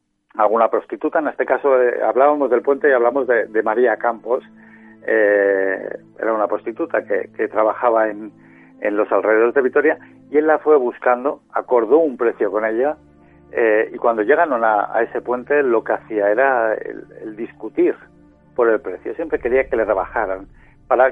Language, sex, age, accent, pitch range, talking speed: Spanish, male, 60-79, Spanish, 110-145 Hz, 180 wpm